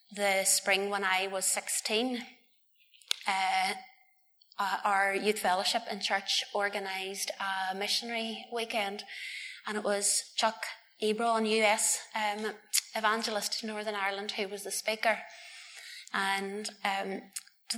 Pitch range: 195-235 Hz